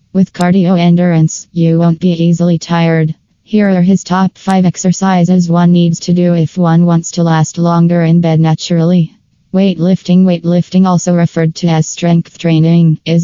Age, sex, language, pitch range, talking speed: 20-39, female, English, 160-175 Hz, 165 wpm